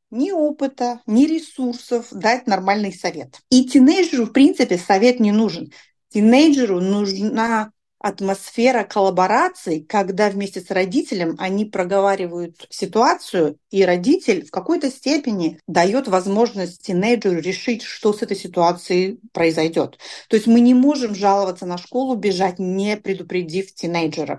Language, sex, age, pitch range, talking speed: Russian, female, 40-59, 185-240 Hz, 125 wpm